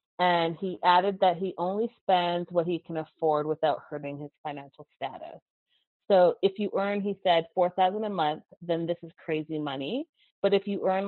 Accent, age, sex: American, 30-49, female